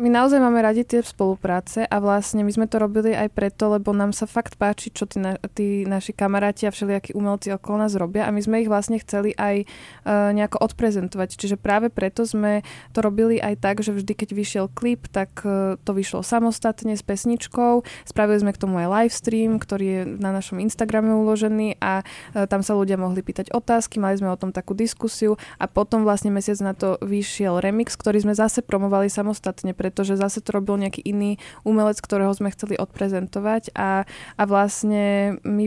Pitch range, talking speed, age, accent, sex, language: 195-215 Hz, 195 wpm, 20-39, native, female, Czech